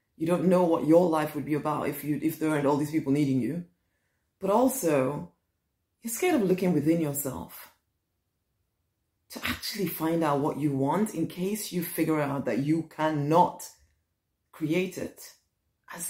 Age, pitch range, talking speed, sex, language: 30-49, 155-225 Hz, 170 wpm, female, English